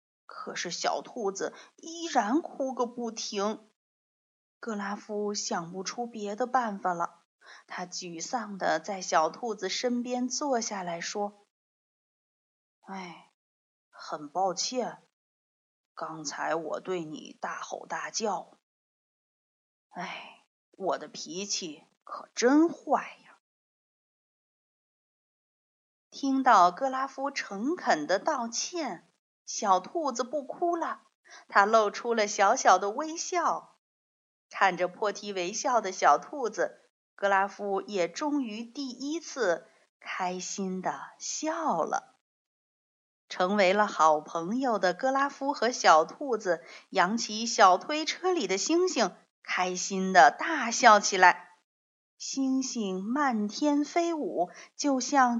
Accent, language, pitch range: native, Chinese, 190-285 Hz